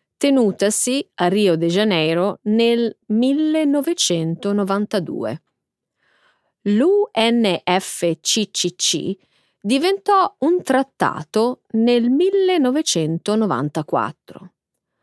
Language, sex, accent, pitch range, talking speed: Italian, female, native, 180-270 Hz, 50 wpm